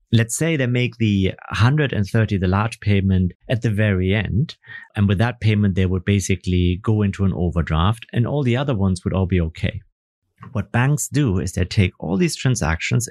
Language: English